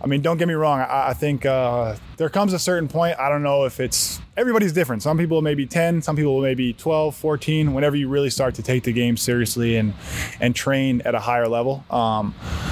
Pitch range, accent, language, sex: 115-135 Hz, American, Finnish, male